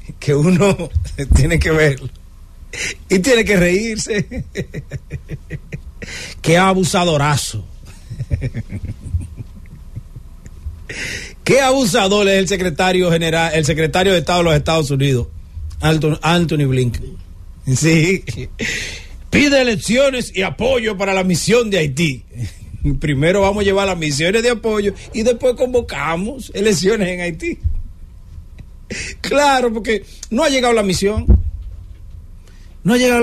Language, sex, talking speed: English, male, 110 wpm